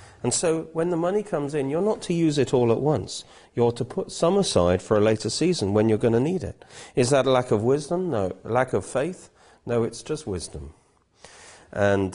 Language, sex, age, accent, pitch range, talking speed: English, male, 40-59, British, 90-120 Hz, 225 wpm